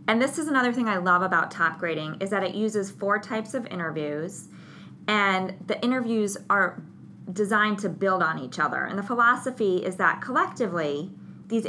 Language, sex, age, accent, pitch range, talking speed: English, female, 20-39, American, 180-210 Hz, 180 wpm